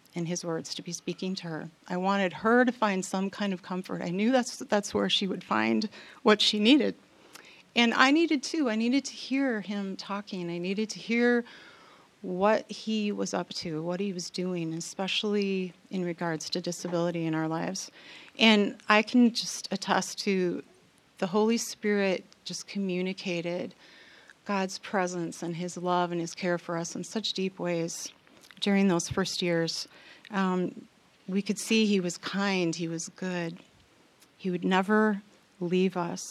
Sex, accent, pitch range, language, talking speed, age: female, American, 175-215 Hz, English, 170 wpm, 40-59